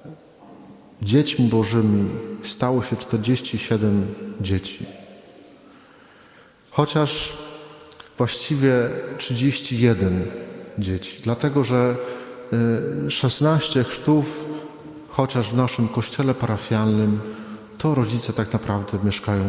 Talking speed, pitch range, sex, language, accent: 75 wpm, 105-130 Hz, male, Polish, native